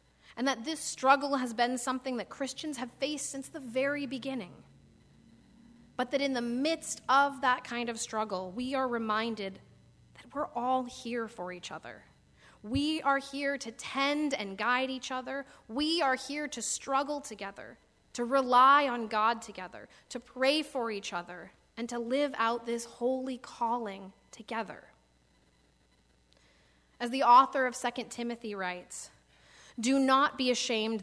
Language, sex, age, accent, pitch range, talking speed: English, female, 30-49, American, 205-265 Hz, 155 wpm